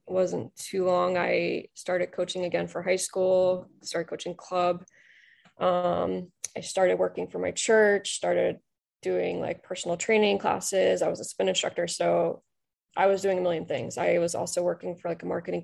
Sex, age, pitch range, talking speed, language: female, 20-39, 170-185 Hz, 175 wpm, English